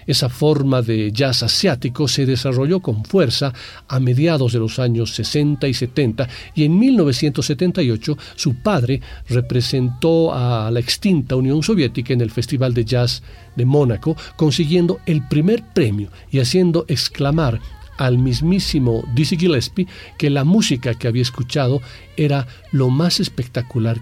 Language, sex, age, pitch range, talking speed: Spanish, male, 50-69, 120-165 Hz, 140 wpm